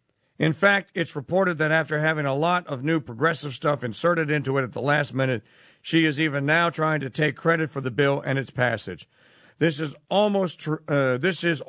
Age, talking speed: 50-69, 210 wpm